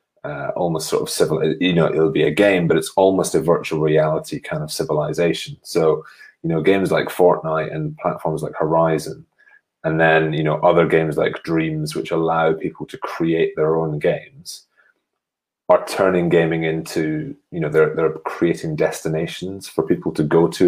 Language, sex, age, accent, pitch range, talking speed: Italian, male, 30-49, British, 80-95 Hz, 175 wpm